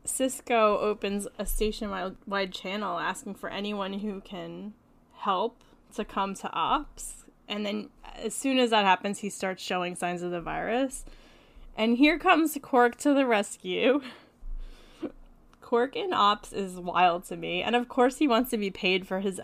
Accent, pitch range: American, 190-235 Hz